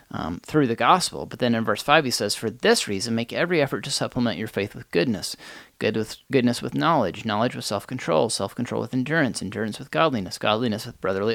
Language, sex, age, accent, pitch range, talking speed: English, male, 30-49, American, 110-135 Hz, 210 wpm